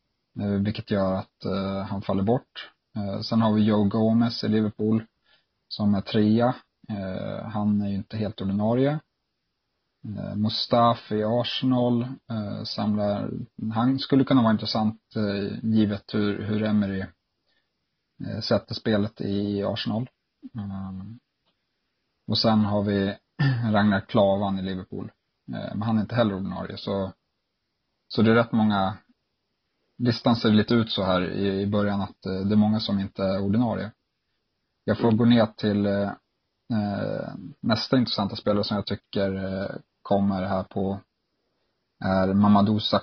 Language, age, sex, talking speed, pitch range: Swedish, 30-49, male, 125 wpm, 100-110 Hz